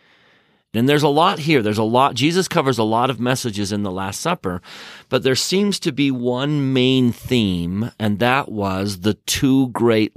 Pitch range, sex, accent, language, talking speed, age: 100-130 Hz, male, American, English, 190 wpm, 40-59